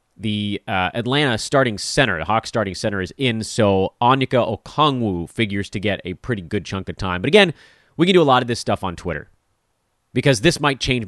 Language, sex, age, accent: English, male, 30-49, American